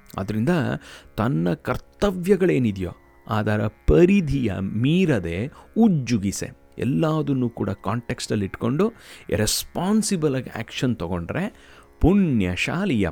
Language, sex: Kannada, male